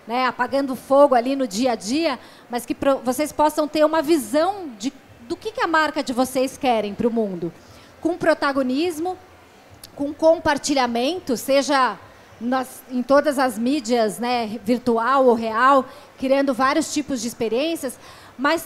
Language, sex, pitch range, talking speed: Portuguese, female, 255-310 Hz, 150 wpm